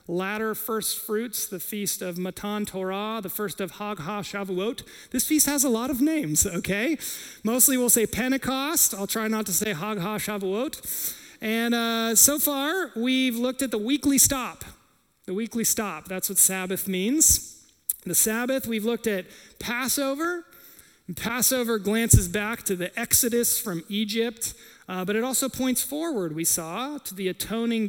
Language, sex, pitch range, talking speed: English, male, 185-250 Hz, 160 wpm